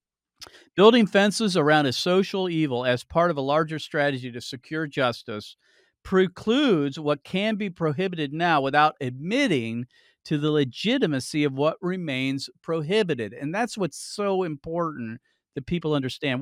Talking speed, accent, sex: 140 wpm, American, male